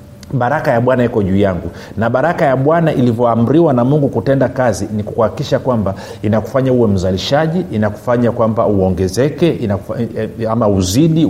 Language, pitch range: Swahili, 105-130 Hz